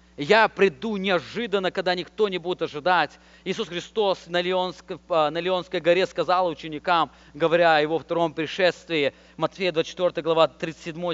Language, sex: English, male